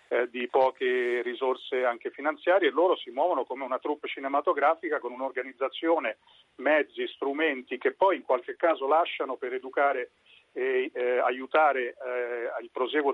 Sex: male